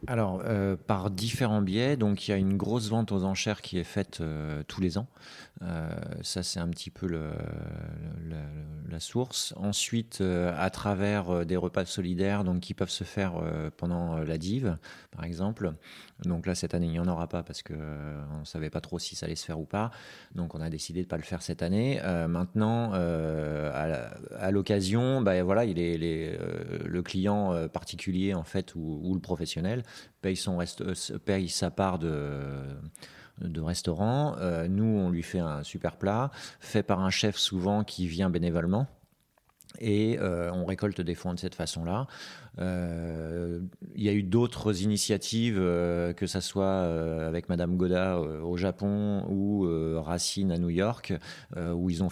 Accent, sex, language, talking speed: French, male, French, 195 wpm